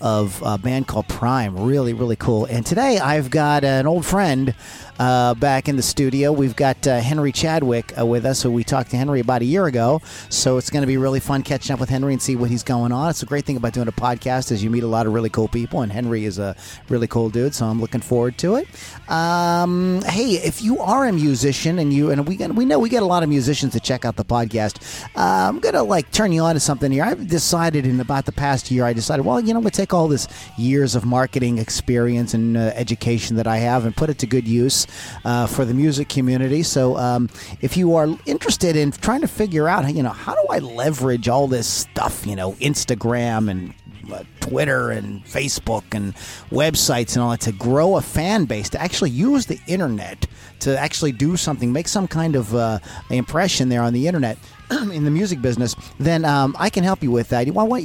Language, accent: English, American